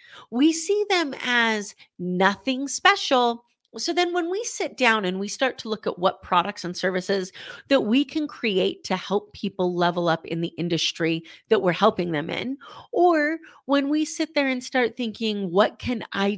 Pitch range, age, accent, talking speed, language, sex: 185-270 Hz, 40-59, American, 185 wpm, English, female